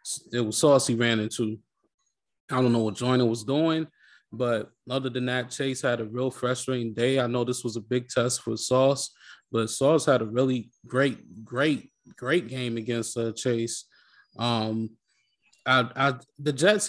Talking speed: 175 wpm